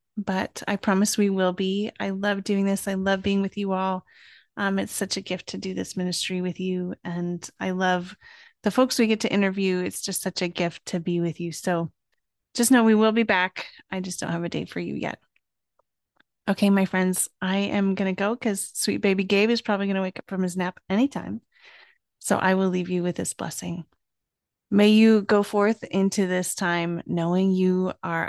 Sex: female